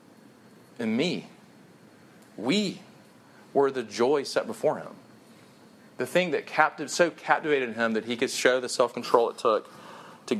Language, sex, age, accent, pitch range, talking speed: English, male, 40-59, American, 110-135 Hz, 145 wpm